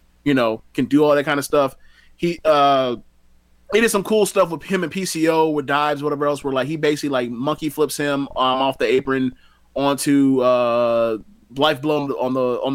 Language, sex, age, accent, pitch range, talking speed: English, male, 20-39, American, 125-155 Hz, 205 wpm